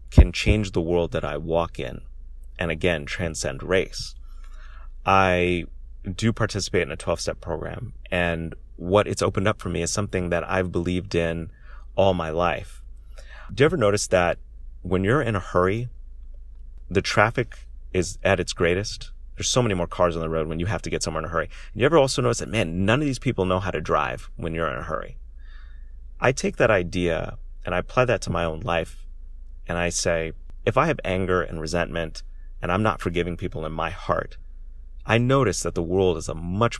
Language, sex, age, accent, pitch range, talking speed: English, male, 30-49, American, 65-95 Hz, 200 wpm